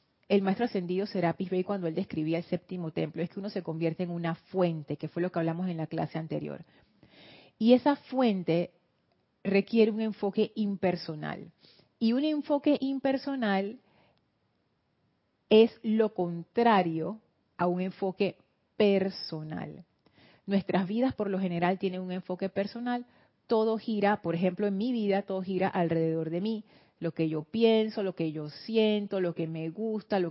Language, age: Spanish, 30-49